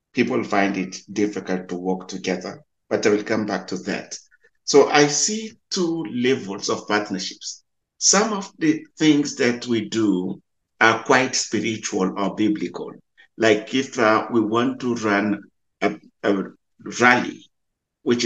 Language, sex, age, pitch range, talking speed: English, male, 50-69, 100-135 Hz, 145 wpm